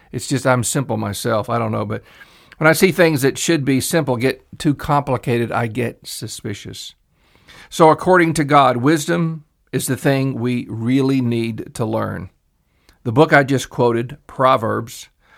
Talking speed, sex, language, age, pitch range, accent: 165 wpm, male, English, 50-69, 115-155 Hz, American